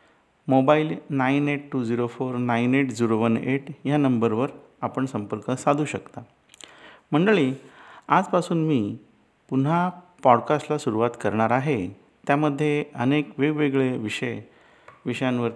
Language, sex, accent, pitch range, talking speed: Marathi, male, native, 125-150 Hz, 135 wpm